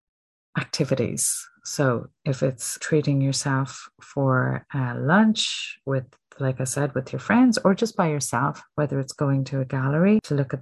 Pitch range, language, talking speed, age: 130-160 Hz, English, 165 wpm, 40-59